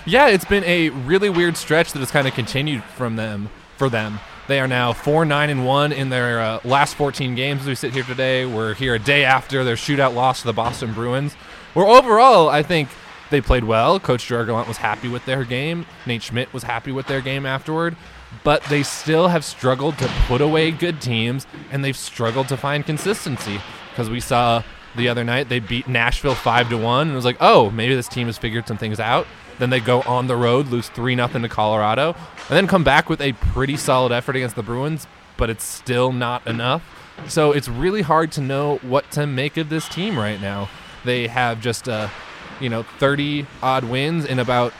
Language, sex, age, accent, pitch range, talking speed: English, male, 20-39, American, 120-145 Hz, 210 wpm